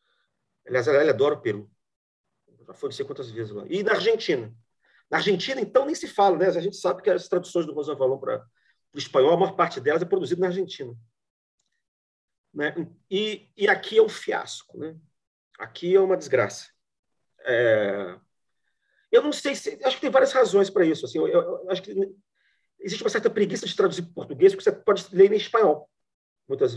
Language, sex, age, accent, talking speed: Portuguese, male, 40-59, Brazilian, 195 wpm